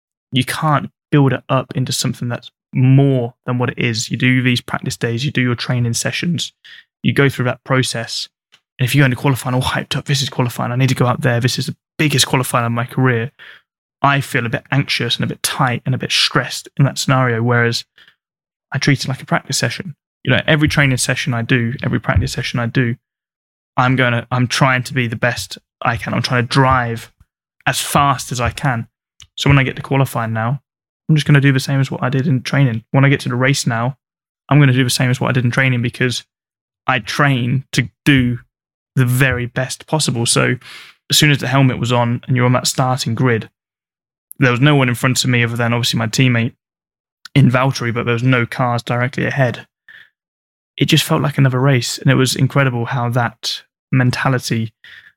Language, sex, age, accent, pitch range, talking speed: English, male, 10-29, British, 120-140 Hz, 225 wpm